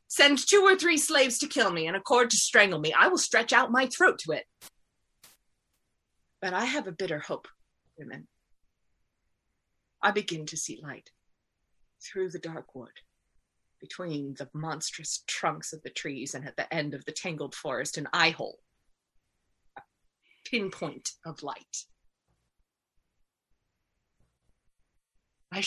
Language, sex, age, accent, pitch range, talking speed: English, female, 30-49, American, 145-200 Hz, 140 wpm